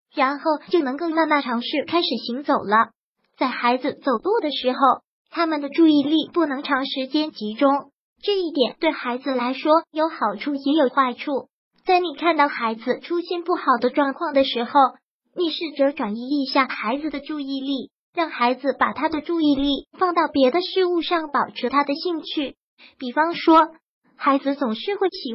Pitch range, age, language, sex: 255-320 Hz, 20-39, Chinese, male